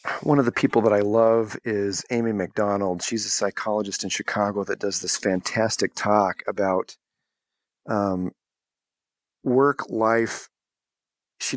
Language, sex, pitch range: English, male, 110-125 Hz